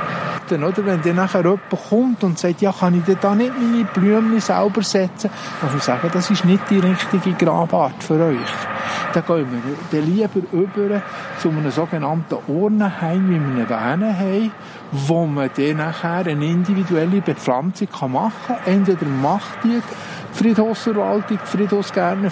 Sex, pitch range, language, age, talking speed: male, 155-195 Hz, German, 50-69, 155 wpm